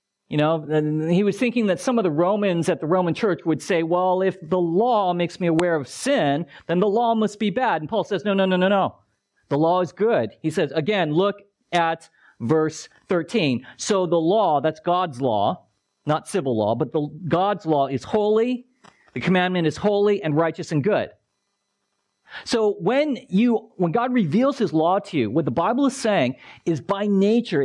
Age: 40-59